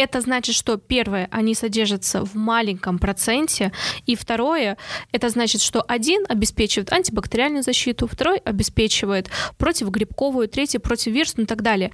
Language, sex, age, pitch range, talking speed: Russian, female, 20-39, 220-260 Hz, 130 wpm